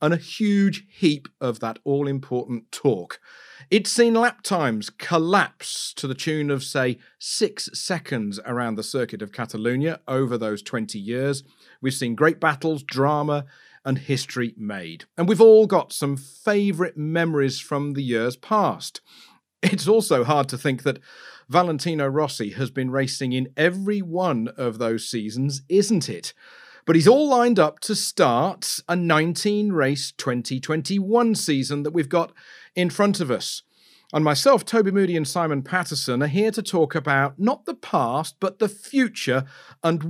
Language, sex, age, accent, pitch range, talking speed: English, male, 40-59, British, 130-180 Hz, 155 wpm